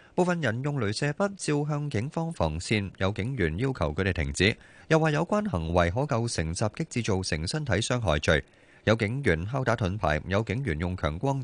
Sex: male